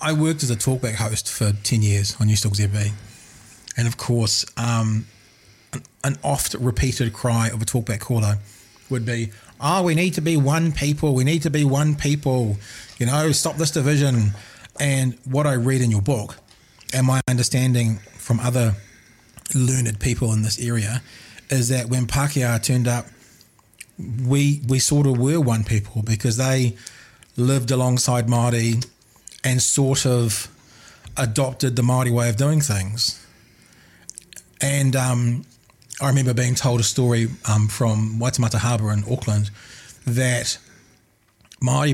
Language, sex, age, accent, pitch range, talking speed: English, male, 30-49, Australian, 110-130 Hz, 150 wpm